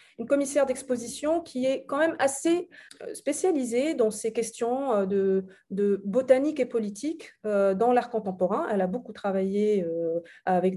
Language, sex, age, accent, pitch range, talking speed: English, female, 30-49, French, 205-265 Hz, 140 wpm